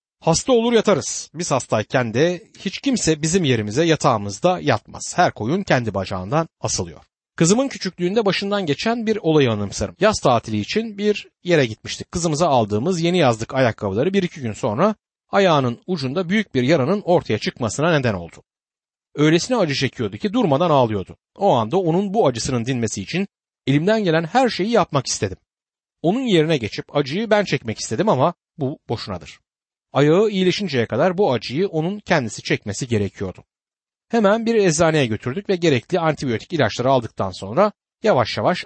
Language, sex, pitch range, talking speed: Turkish, male, 120-190 Hz, 150 wpm